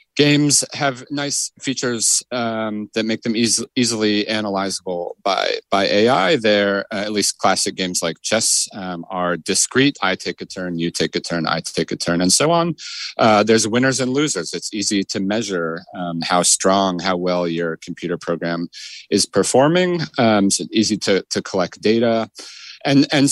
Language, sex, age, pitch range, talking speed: English, male, 30-49, 90-115 Hz, 180 wpm